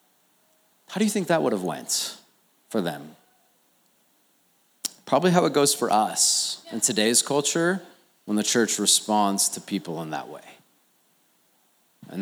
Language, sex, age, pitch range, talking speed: English, male, 30-49, 115-165 Hz, 140 wpm